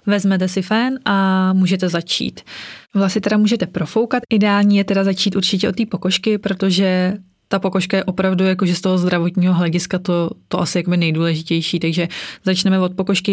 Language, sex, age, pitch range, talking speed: Czech, female, 20-39, 170-190 Hz, 175 wpm